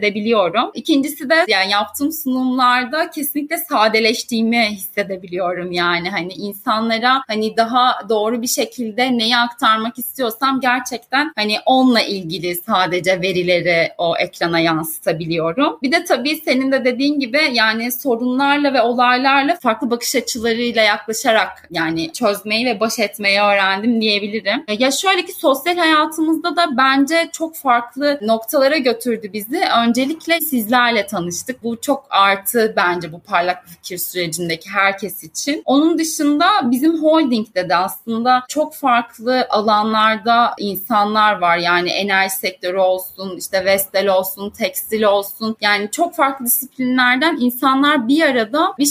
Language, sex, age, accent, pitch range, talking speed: Turkish, female, 30-49, native, 205-280 Hz, 130 wpm